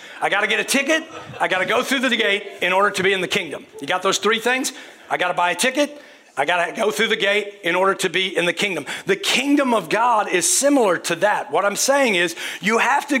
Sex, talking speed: male, 275 wpm